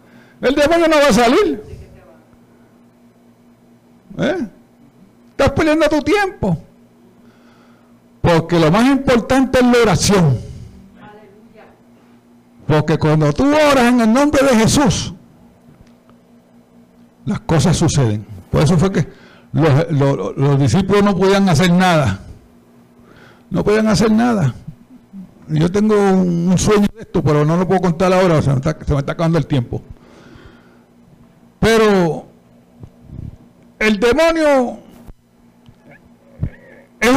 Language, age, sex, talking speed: Spanish, 60-79, male, 115 wpm